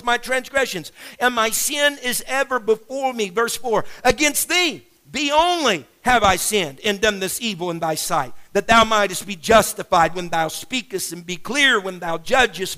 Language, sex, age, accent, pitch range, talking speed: English, male, 50-69, American, 215-265 Hz, 185 wpm